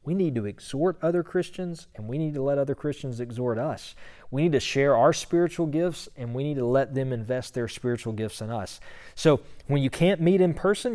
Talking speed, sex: 225 wpm, male